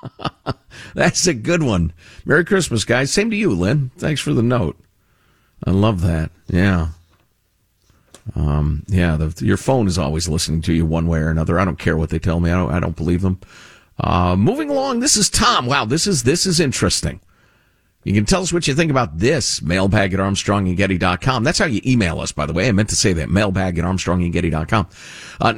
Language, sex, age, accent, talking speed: English, male, 50-69, American, 205 wpm